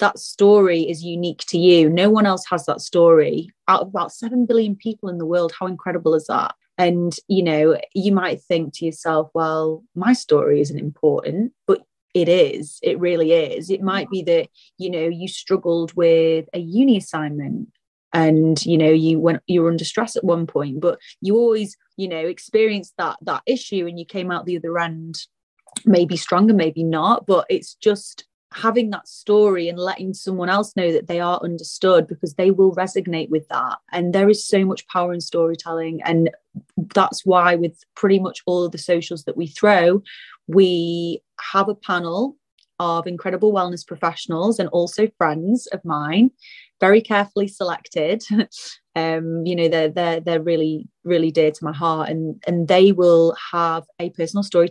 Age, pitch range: 30-49, 165-200 Hz